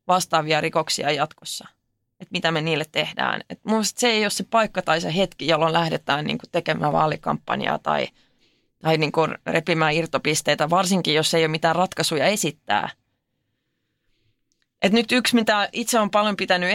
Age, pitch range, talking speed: 20-39, 165-200 Hz, 150 wpm